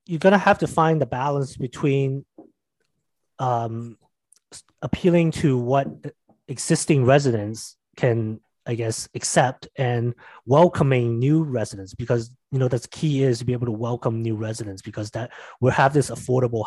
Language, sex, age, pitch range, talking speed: English, male, 30-49, 110-135 Hz, 150 wpm